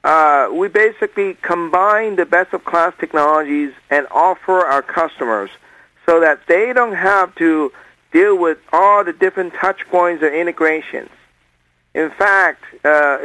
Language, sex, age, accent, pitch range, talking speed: English, male, 50-69, American, 155-210 Hz, 130 wpm